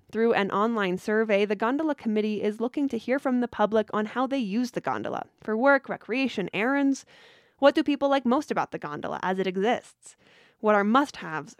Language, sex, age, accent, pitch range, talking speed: English, female, 10-29, American, 200-250 Hz, 195 wpm